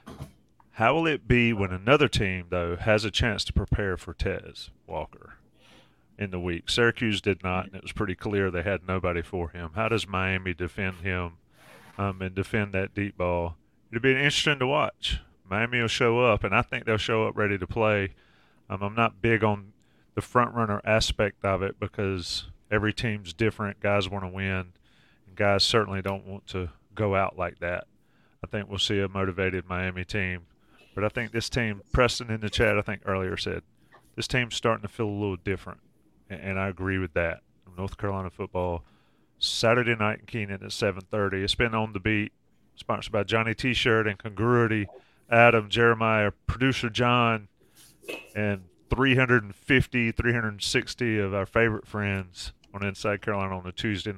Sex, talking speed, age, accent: male, 175 wpm, 30-49, American